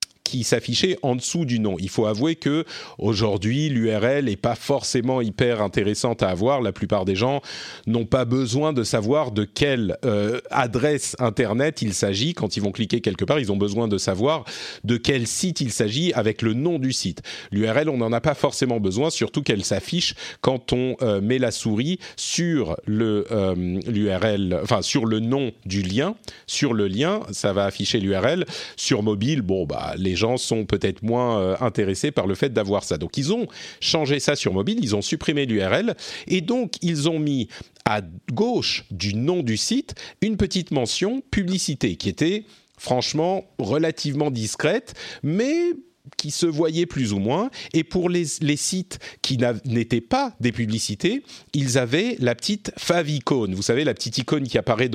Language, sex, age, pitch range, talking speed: French, male, 40-59, 105-150 Hz, 180 wpm